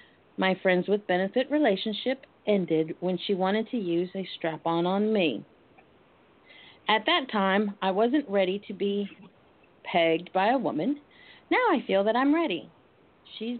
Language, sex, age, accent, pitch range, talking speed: English, female, 40-59, American, 180-235 Hz, 150 wpm